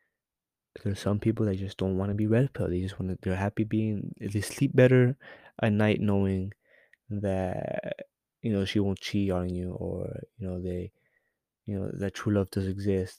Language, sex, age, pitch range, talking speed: English, male, 20-39, 95-110 Hz, 190 wpm